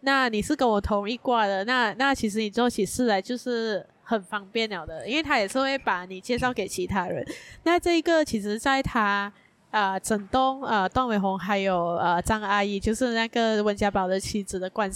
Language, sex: Chinese, female